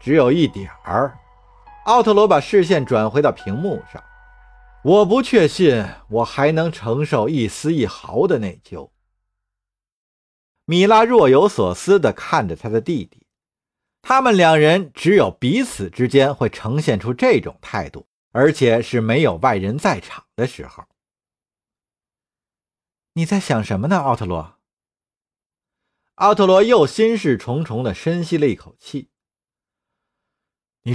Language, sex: Chinese, male